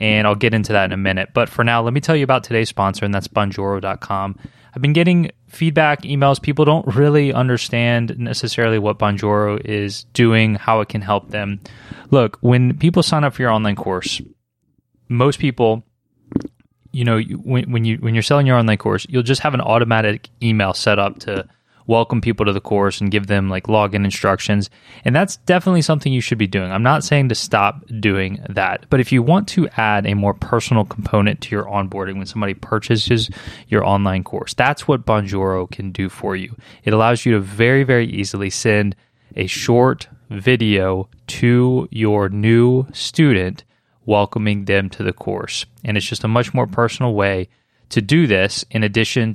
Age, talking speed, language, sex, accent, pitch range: 20-39, 190 wpm, English, male, American, 100-125 Hz